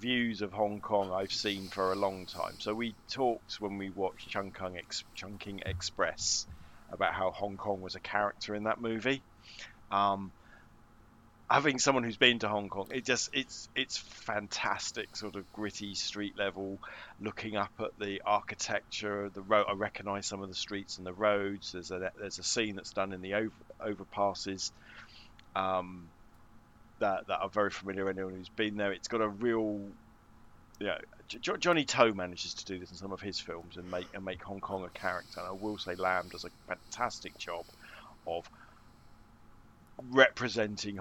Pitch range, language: 95-105 Hz, English